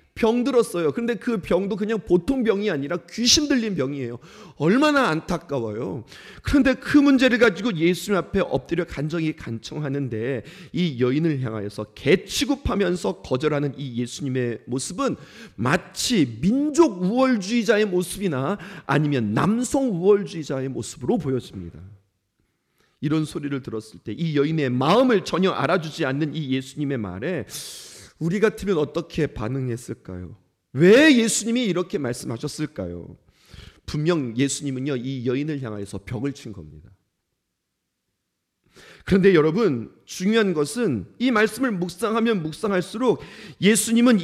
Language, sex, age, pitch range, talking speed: English, male, 40-59, 135-225 Hz, 105 wpm